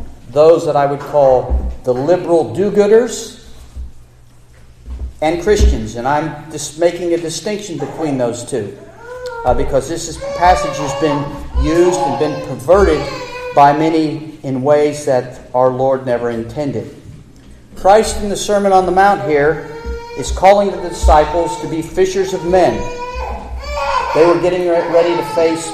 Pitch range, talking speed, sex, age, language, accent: 130-175 Hz, 140 wpm, male, 50-69, English, American